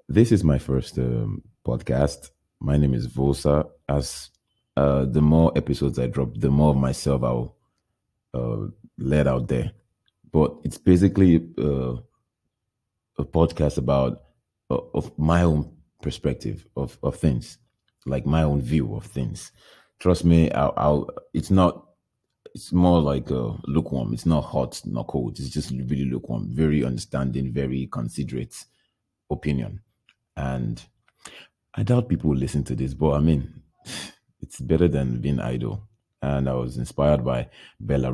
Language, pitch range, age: English, 65-80 Hz, 30-49